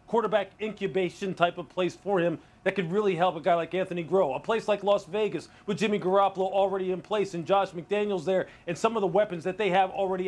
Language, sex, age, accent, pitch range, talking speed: English, male, 40-59, American, 180-210 Hz, 235 wpm